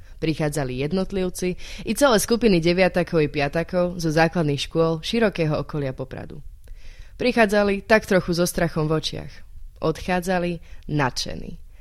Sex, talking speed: female, 115 wpm